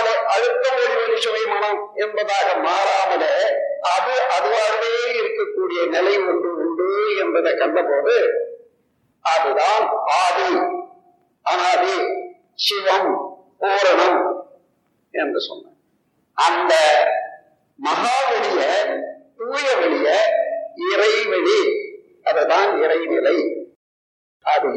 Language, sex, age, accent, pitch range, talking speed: Tamil, male, 50-69, native, 300-470 Hz, 55 wpm